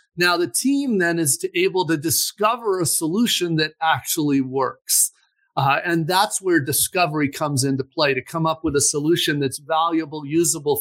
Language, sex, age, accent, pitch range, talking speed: French, male, 40-59, American, 150-195 Hz, 170 wpm